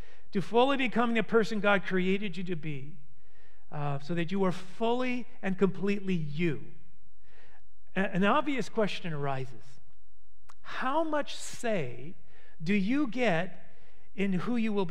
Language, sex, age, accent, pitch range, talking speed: English, male, 40-59, American, 165-230 Hz, 135 wpm